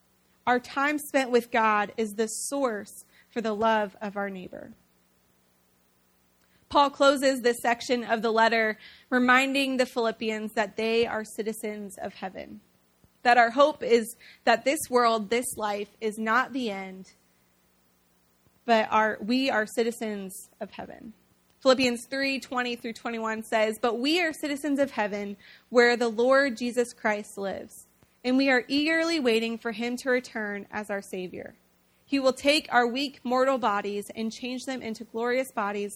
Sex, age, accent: female, 20-39, American